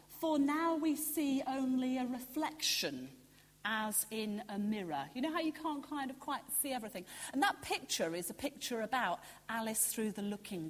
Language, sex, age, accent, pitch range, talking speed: English, female, 40-59, British, 200-295 Hz, 180 wpm